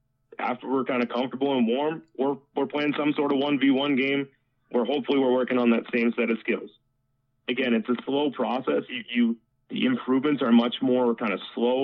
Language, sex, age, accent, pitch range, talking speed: English, male, 30-49, American, 115-135 Hz, 205 wpm